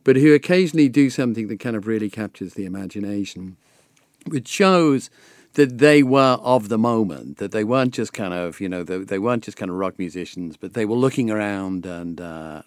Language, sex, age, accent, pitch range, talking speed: English, male, 50-69, British, 95-135 Hz, 200 wpm